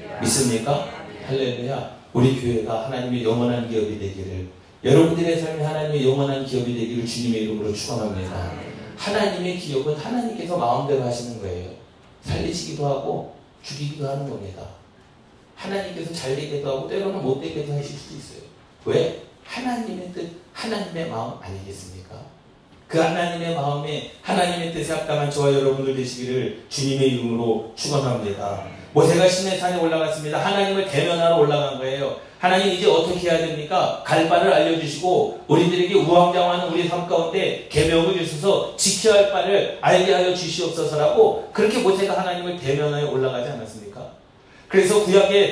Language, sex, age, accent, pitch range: Korean, male, 40-59, native, 130-185 Hz